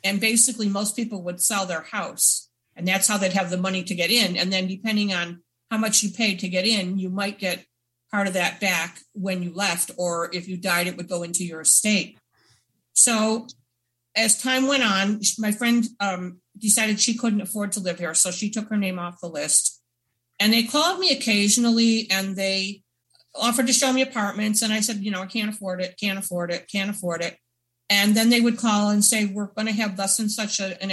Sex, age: female, 50-69